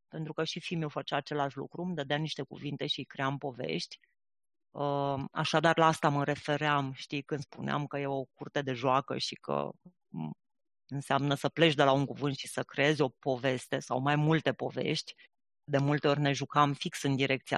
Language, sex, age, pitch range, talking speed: Romanian, female, 30-49, 140-175 Hz, 185 wpm